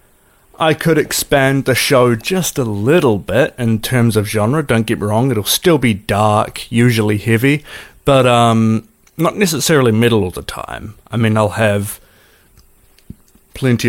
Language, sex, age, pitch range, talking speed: English, male, 30-49, 105-130 Hz, 155 wpm